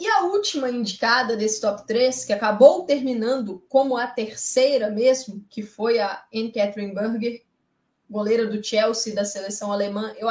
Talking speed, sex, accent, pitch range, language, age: 150 wpm, female, Brazilian, 225-280 Hz, Portuguese, 20-39